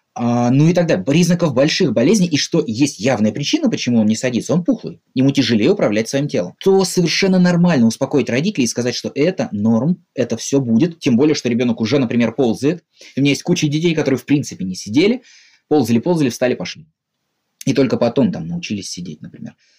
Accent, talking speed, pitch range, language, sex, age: native, 190 wpm, 115-165 Hz, Russian, male, 20-39